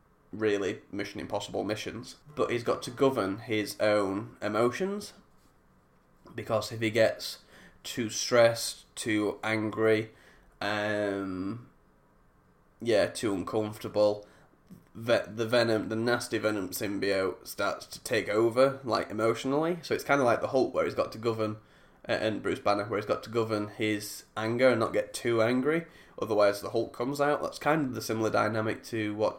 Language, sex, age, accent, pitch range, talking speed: English, male, 10-29, British, 105-115 Hz, 155 wpm